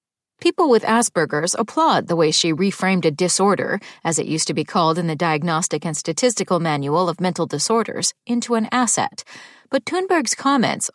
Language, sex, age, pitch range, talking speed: English, female, 40-59, 180-250 Hz, 170 wpm